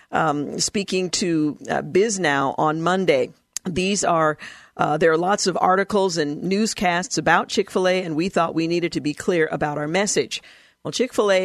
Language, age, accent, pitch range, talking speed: English, 50-69, American, 155-190 Hz, 175 wpm